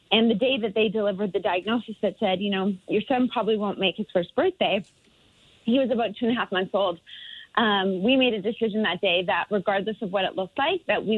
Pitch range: 200-235 Hz